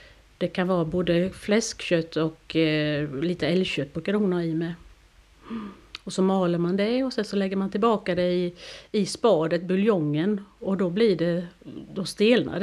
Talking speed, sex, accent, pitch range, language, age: 160 wpm, female, native, 180-235 Hz, Swedish, 40-59